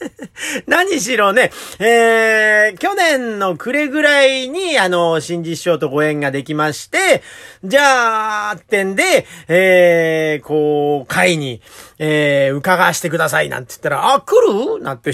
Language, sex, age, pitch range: Japanese, male, 40-59, 165-260 Hz